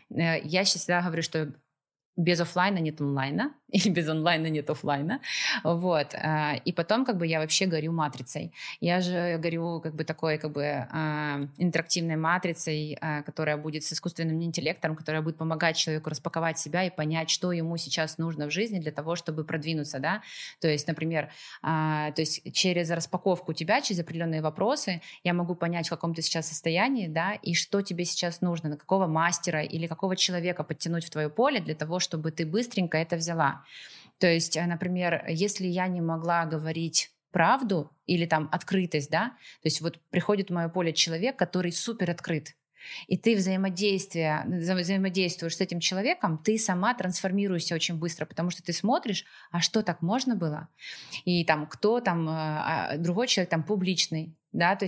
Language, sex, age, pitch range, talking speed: Russian, female, 20-39, 160-185 Hz, 165 wpm